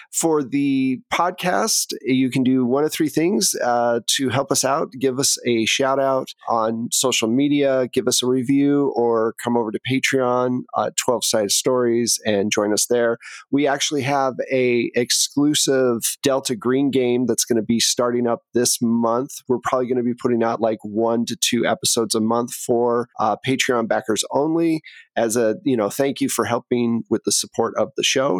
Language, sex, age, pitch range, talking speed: English, male, 40-59, 115-140 Hz, 190 wpm